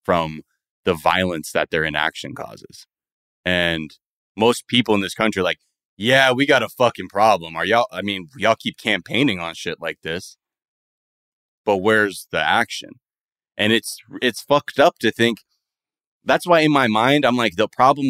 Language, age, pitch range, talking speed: English, 30-49, 95-125 Hz, 170 wpm